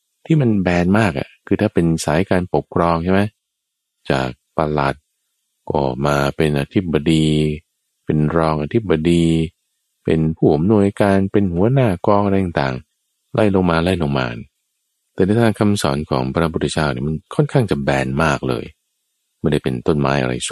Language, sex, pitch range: Thai, male, 75-105 Hz